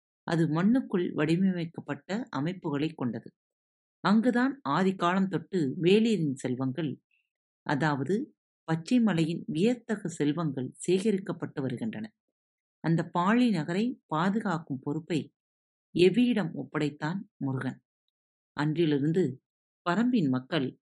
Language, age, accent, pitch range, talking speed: Tamil, 50-69, native, 140-195 Hz, 80 wpm